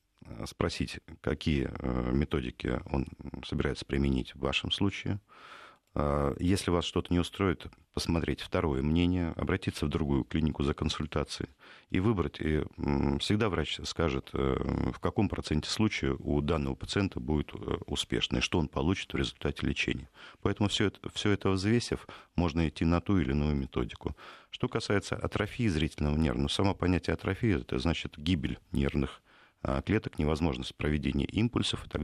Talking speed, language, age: 145 wpm, Russian, 50-69